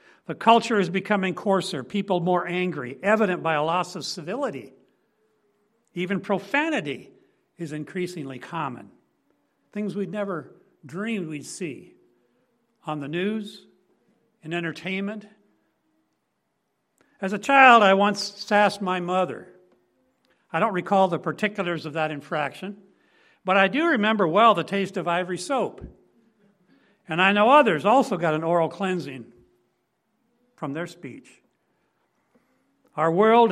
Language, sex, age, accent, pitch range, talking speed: English, male, 60-79, American, 160-205 Hz, 125 wpm